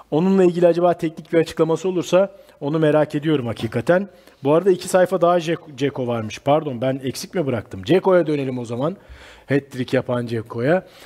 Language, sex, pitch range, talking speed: Turkish, male, 150-200 Hz, 170 wpm